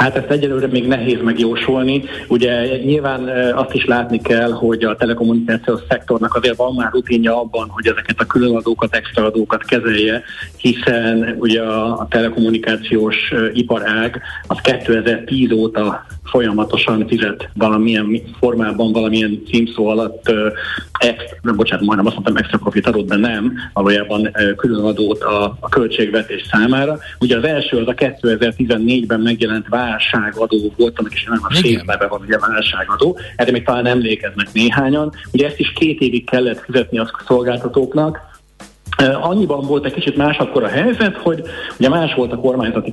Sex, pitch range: male, 110-130 Hz